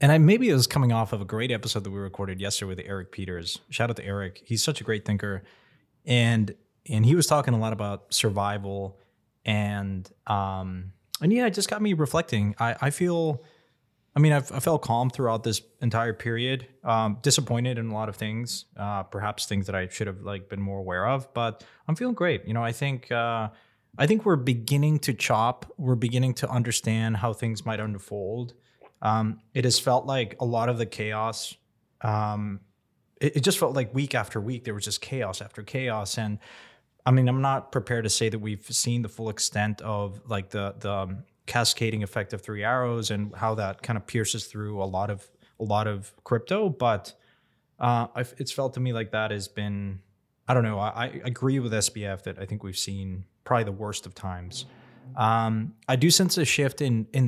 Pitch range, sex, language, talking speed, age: 105-125 Hz, male, English, 205 wpm, 20-39